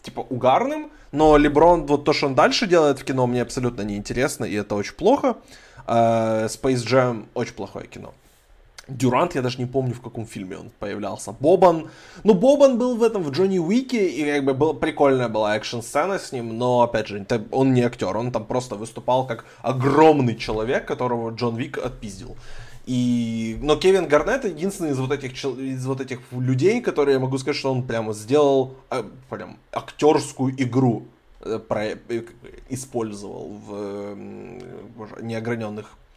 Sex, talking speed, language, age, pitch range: male, 165 wpm, Ukrainian, 20-39, 115-145 Hz